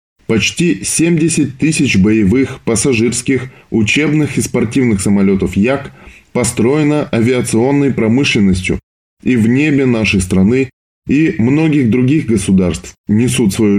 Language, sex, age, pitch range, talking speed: Russian, male, 20-39, 95-135 Hz, 105 wpm